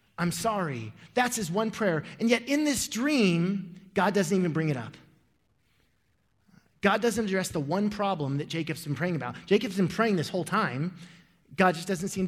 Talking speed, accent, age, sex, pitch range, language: 185 wpm, American, 30-49, male, 170-225 Hz, English